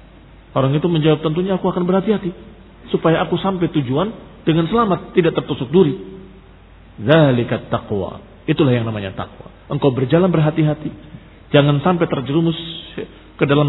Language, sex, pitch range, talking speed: Indonesian, male, 110-185 Hz, 130 wpm